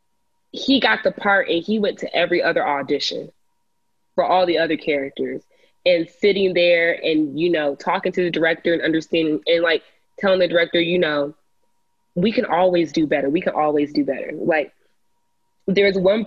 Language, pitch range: English, 160-195 Hz